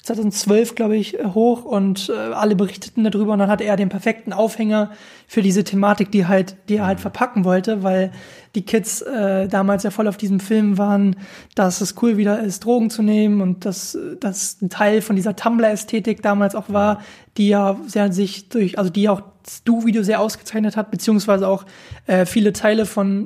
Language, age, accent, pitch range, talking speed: German, 20-39, German, 195-215 Hz, 190 wpm